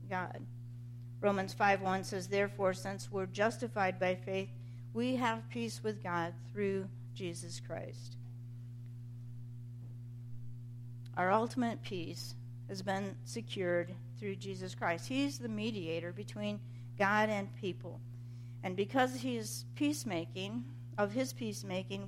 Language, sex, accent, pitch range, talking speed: English, female, American, 115-185 Hz, 115 wpm